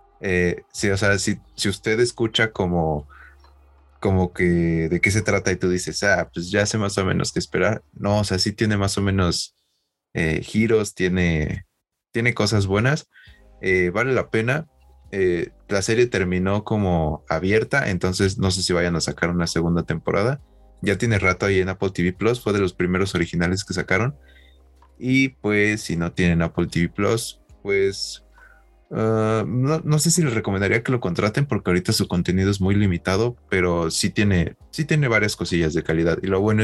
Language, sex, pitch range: Spanish, male, 85-110 Hz